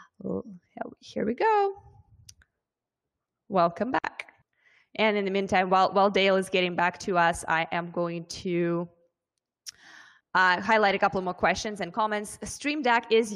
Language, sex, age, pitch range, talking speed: English, female, 20-39, 175-210 Hz, 155 wpm